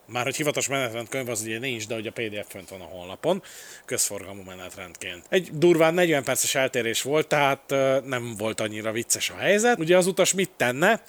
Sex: male